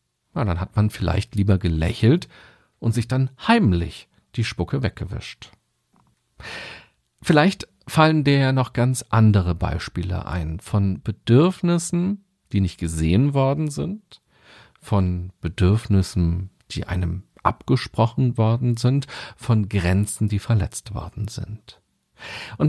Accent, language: German, German